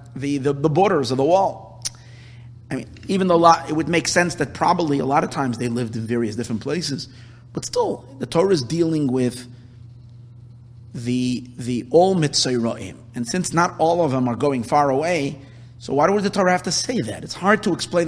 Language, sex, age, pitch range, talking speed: English, male, 30-49, 120-155 Hz, 210 wpm